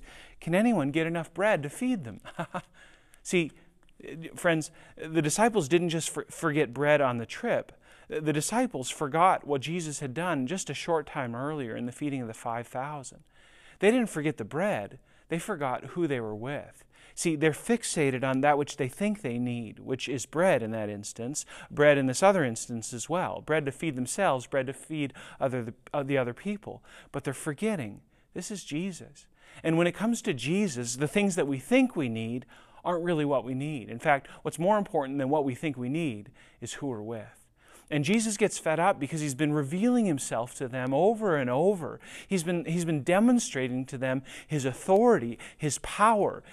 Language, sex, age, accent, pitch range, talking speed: English, male, 40-59, American, 135-180 Hz, 190 wpm